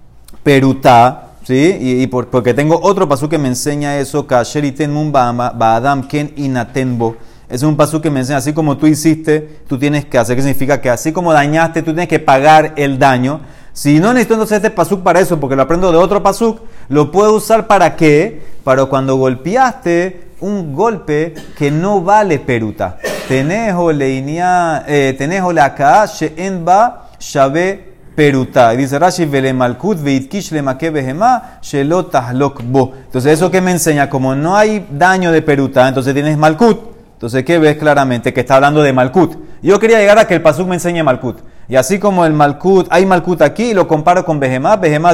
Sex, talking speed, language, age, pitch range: male, 175 wpm, Spanish, 30-49, 135-185 Hz